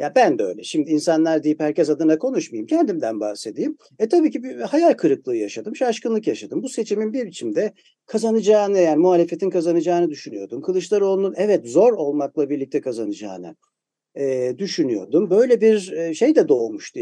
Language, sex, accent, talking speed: Turkish, male, native, 150 wpm